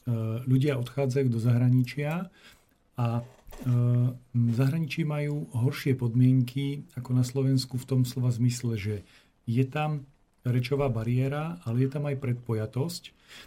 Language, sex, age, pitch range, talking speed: Slovak, male, 40-59, 120-135 Hz, 115 wpm